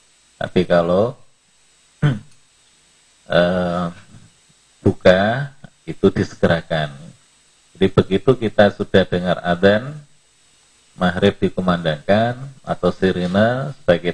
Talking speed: 70 wpm